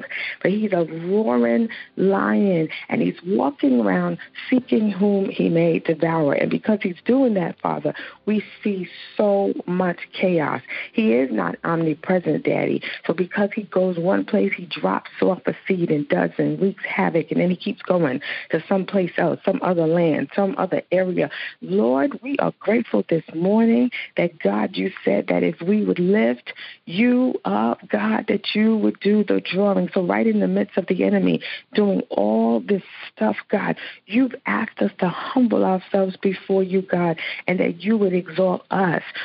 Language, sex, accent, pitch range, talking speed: English, female, American, 175-215 Hz, 170 wpm